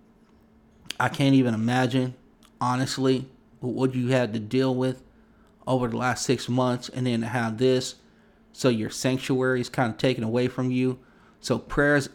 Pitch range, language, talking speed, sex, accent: 115-130 Hz, English, 165 wpm, male, American